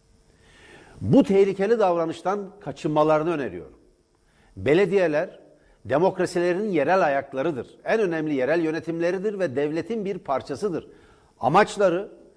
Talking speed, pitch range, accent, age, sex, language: 85 wpm, 155-195 Hz, native, 60-79, male, Turkish